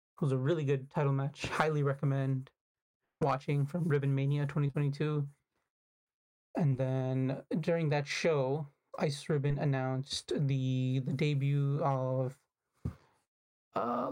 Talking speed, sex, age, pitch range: 125 wpm, male, 30-49, 135-155 Hz